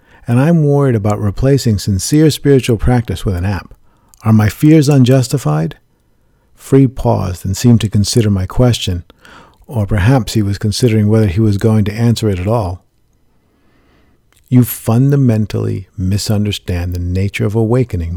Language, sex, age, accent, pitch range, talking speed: English, male, 50-69, American, 95-125 Hz, 145 wpm